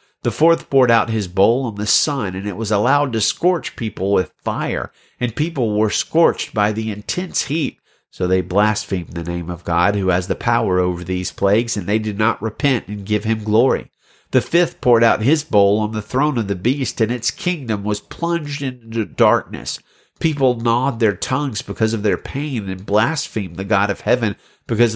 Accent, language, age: American, English, 50-69